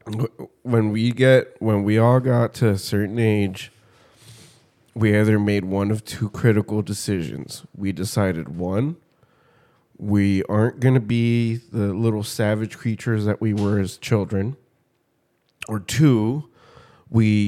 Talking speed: 135 wpm